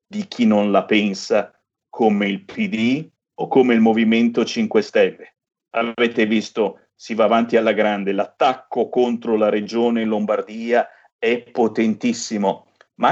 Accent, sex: native, male